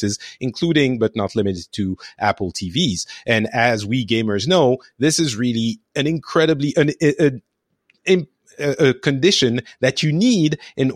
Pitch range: 110-150 Hz